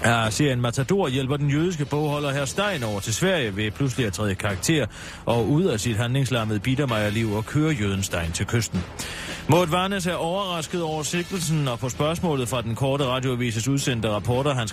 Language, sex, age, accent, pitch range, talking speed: Danish, male, 30-49, native, 110-155 Hz, 180 wpm